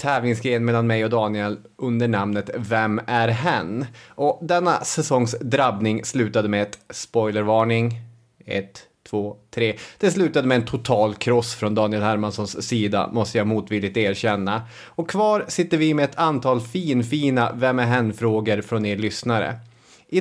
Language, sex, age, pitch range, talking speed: English, male, 30-49, 115-145 Hz, 150 wpm